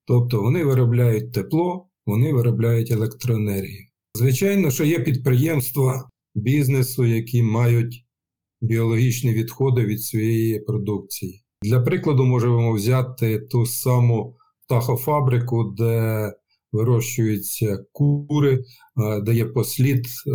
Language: Ukrainian